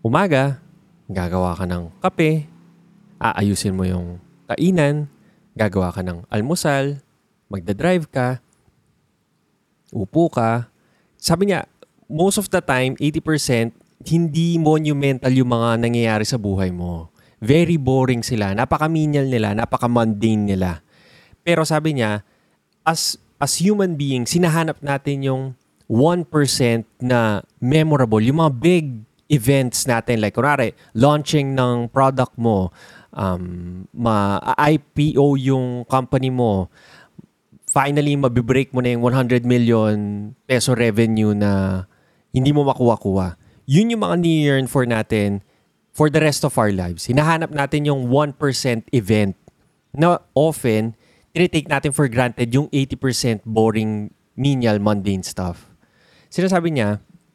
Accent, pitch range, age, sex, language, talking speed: native, 110-150 Hz, 20-39, male, Filipino, 115 wpm